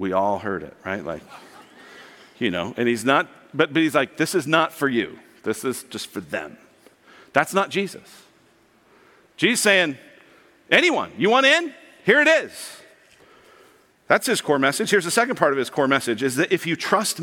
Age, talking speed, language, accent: 50-69, 190 wpm, English, American